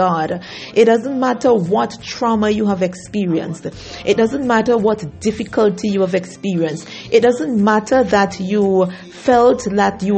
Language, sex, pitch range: English, female, 180-220 Hz